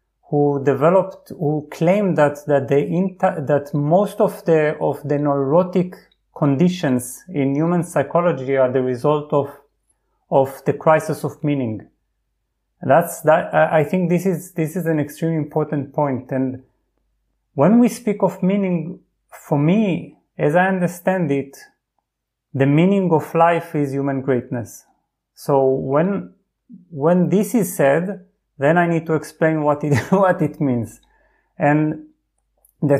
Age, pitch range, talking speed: 30-49, 140-175 Hz, 140 wpm